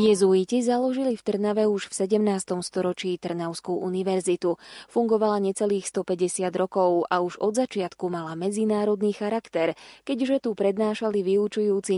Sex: female